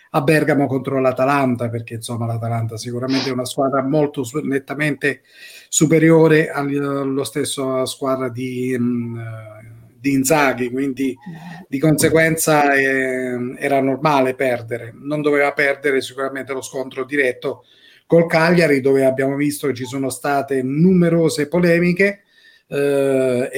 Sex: male